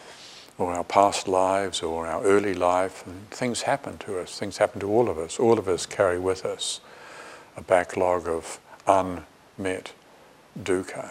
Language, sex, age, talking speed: English, male, 60-79, 160 wpm